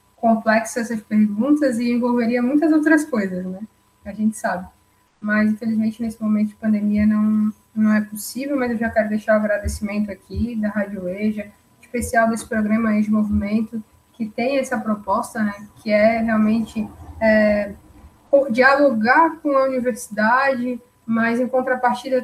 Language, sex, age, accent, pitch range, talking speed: Portuguese, female, 10-29, Brazilian, 210-240 Hz, 150 wpm